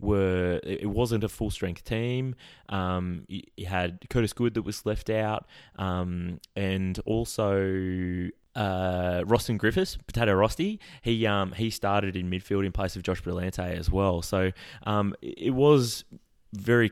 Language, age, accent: English, 20-39, Australian